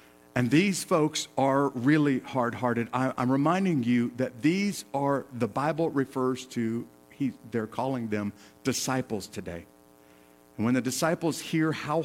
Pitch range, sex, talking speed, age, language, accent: 110-145 Hz, male, 135 wpm, 50-69, English, American